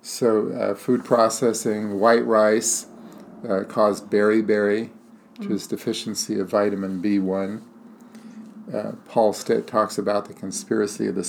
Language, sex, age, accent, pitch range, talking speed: English, male, 50-69, American, 105-140 Hz, 130 wpm